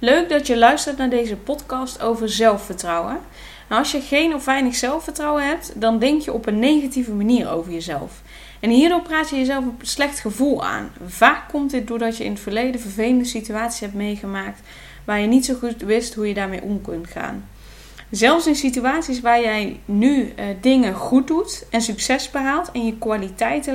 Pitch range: 220-265 Hz